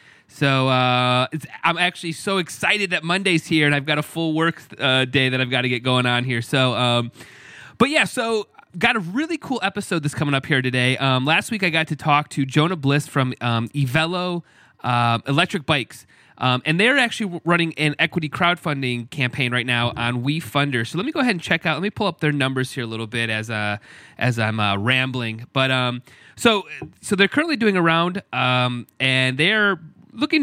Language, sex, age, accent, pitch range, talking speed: English, male, 30-49, American, 125-170 Hz, 210 wpm